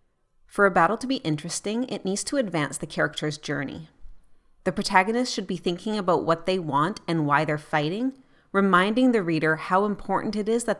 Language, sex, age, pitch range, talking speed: English, female, 30-49, 155-195 Hz, 190 wpm